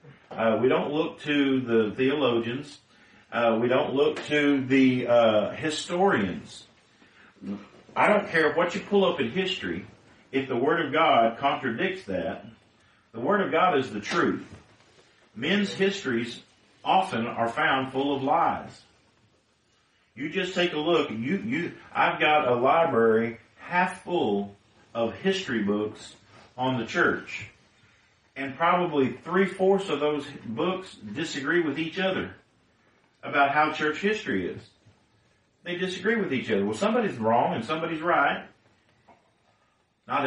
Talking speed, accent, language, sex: 135 wpm, American, English, male